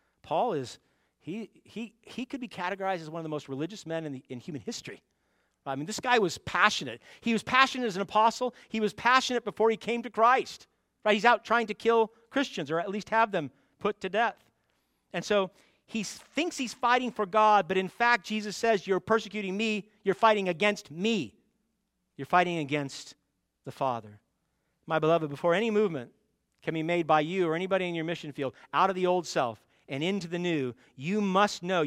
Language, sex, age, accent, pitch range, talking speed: English, male, 40-59, American, 160-225 Hz, 205 wpm